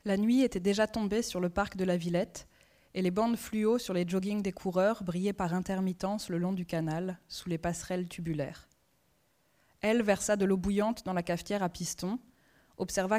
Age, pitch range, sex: 20-39, 170-200 Hz, female